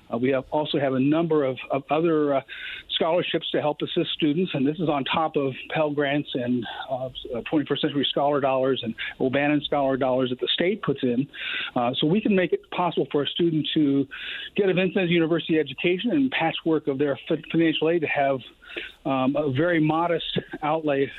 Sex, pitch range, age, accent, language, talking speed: male, 140-165 Hz, 40-59, American, English, 195 wpm